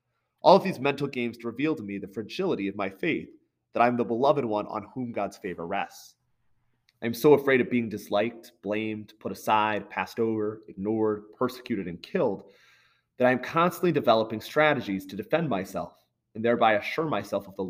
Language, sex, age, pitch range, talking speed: English, male, 30-49, 105-125 Hz, 185 wpm